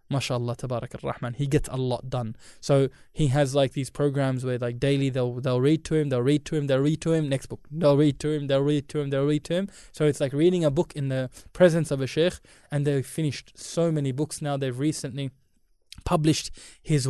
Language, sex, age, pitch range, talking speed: English, male, 20-39, 130-150 Hz, 240 wpm